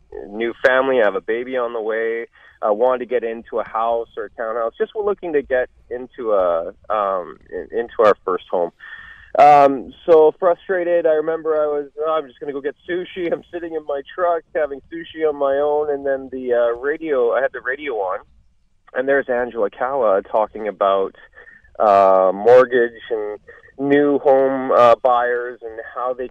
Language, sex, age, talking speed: English, male, 30-49, 185 wpm